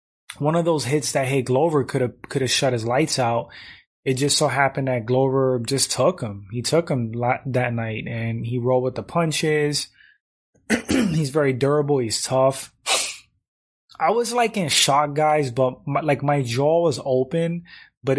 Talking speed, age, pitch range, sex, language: 180 wpm, 20-39, 120-150 Hz, male, English